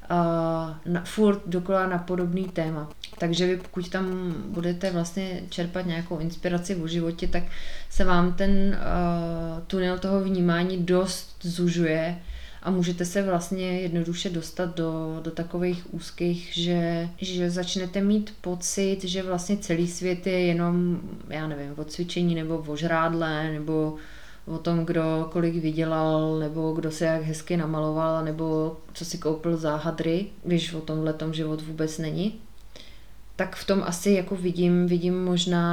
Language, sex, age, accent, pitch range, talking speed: Czech, female, 20-39, native, 165-180 Hz, 145 wpm